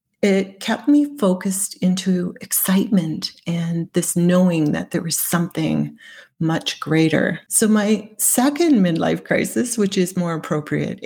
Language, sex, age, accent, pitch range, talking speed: English, female, 40-59, American, 160-200 Hz, 130 wpm